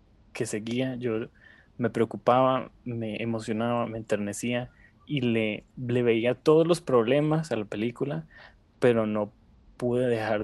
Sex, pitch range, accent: male, 110-130 Hz, Mexican